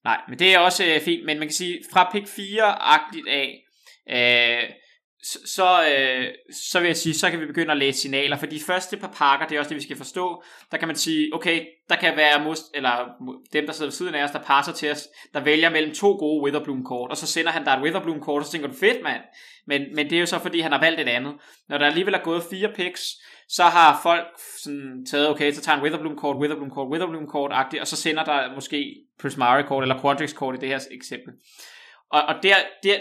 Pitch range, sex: 140-170 Hz, male